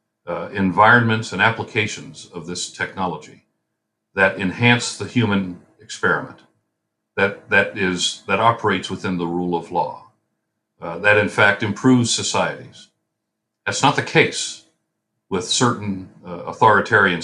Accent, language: American, English